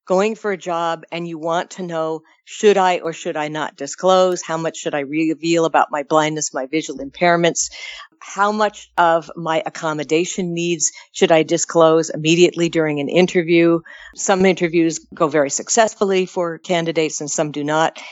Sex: female